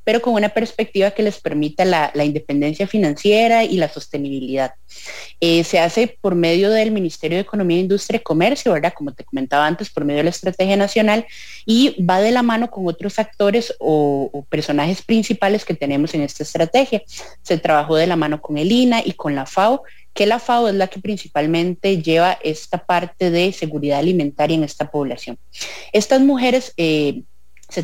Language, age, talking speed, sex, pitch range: English, 30-49, 185 wpm, female, 155-225 Hz